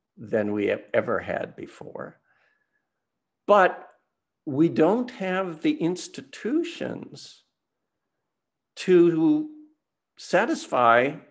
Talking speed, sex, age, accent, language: 75 wpm, male, 60-79, American, English